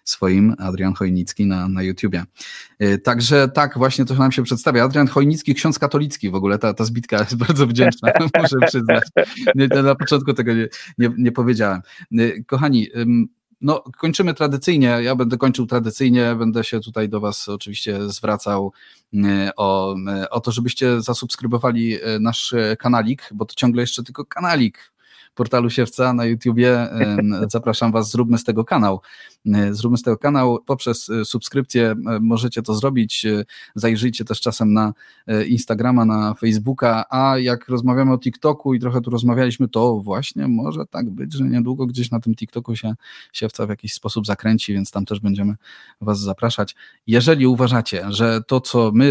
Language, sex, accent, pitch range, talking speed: Polish, male, native, 105-125 Hz, 155 wpm